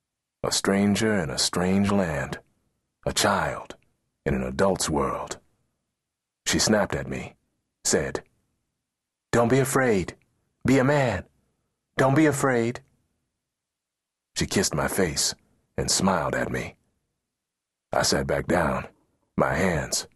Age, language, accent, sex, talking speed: 40-59, English, American, male, 120 wpm